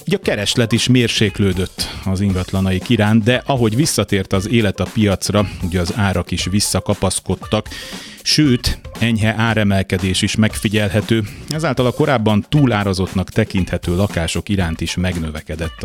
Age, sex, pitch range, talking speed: 30-49, male, 95-115 Hz, 125 wpm